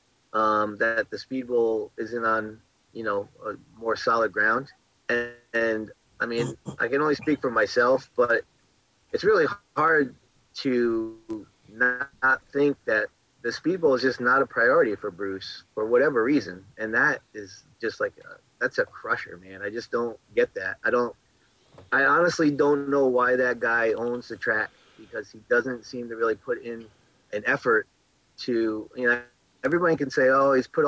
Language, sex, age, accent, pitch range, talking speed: English, male, 30-49, American, 115-150 Hz, 175 wpm